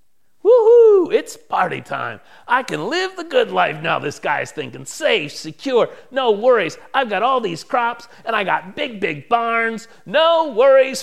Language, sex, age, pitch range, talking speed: English, male, 40-59, 135-205 Hz, 170 wpm